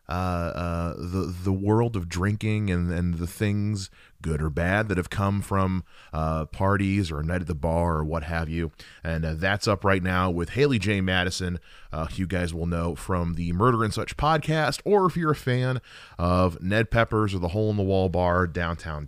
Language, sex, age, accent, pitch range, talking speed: English, male, 30-49, American, 90-120 Hz, 210 wpm